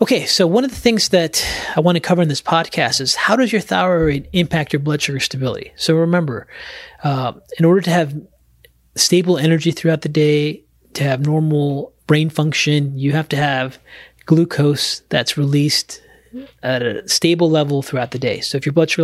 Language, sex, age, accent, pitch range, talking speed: English, male, 30-49, American, 135-165 Hz, 190 wpm